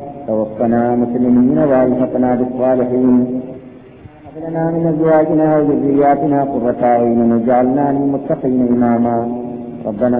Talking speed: 80 wpm